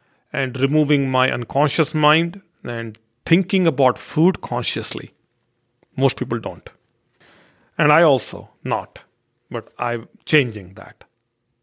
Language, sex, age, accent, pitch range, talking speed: English, male, 40-59, Indian, 115-145 Hz, 110 wpm